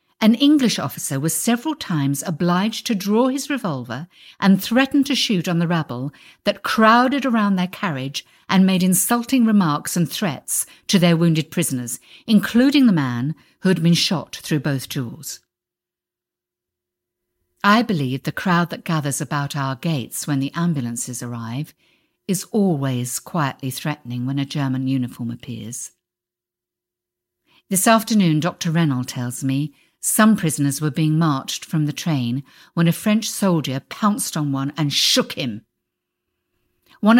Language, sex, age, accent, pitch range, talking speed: English, female, 50-69, British, 135-215 Hz, 145 wpm